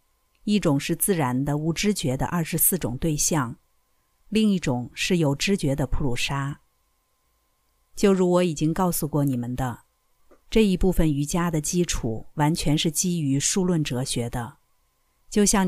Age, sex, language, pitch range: 50-69, female, Chinese, 140-185 Hz